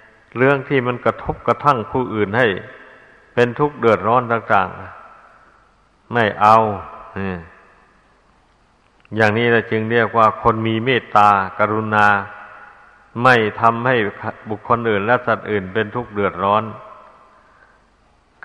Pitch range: 110-125 Hz